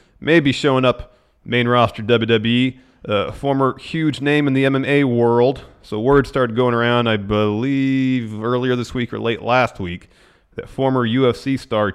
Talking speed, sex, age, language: 165 wpm, male, 40-59, English